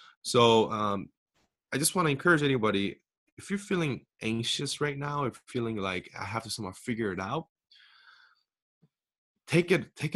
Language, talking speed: English, 165 wpm